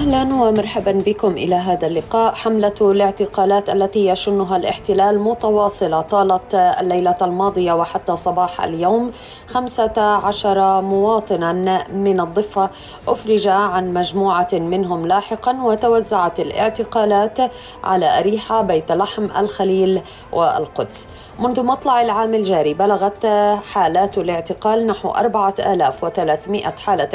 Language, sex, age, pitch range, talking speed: Arabic, female, 20-39, 185-215 Hz, 105 wpm